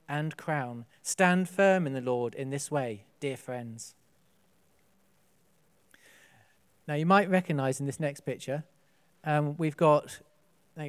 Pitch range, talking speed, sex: 135-185 Hz, 130 wpm, male